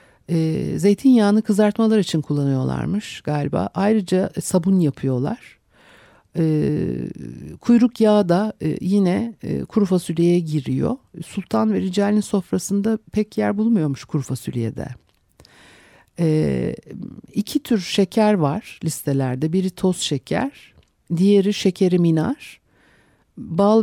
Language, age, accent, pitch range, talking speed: Turkish, 60-79, native, 145-215 Hz, 90 wpm